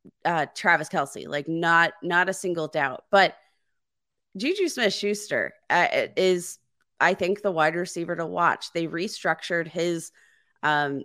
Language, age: English, 20-39